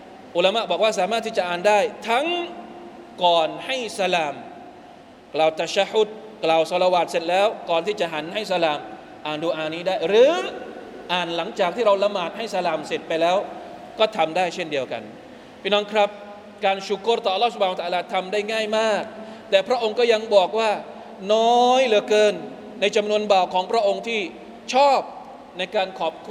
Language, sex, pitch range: Thai, male, 185-230 Hz